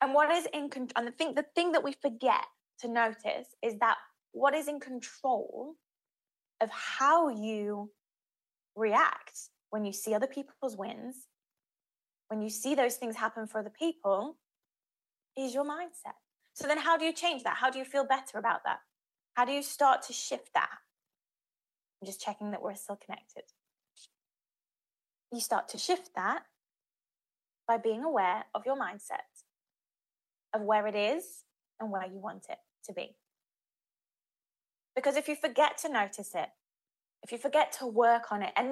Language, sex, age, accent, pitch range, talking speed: English, female, 20-39, British, 220-290 Hz, 165 wpm